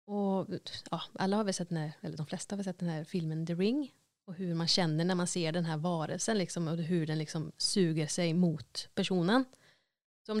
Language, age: Swedish, 30-49